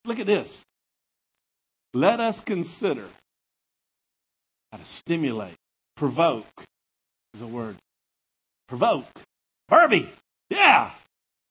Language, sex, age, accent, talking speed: English, male, 50-69, American, 85 wpm